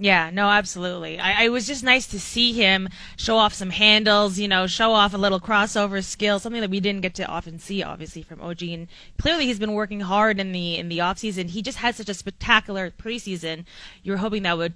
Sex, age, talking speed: female, 20-39, 230 wpm